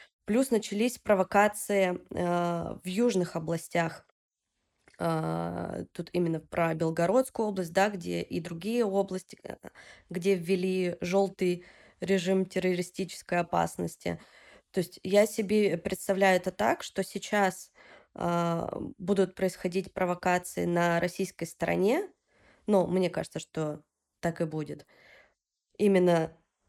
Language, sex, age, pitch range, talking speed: Russian, female, 20-39, 165-195 Hz, 110 wpm